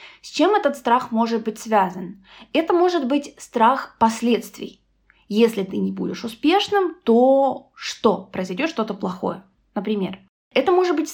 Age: 20-39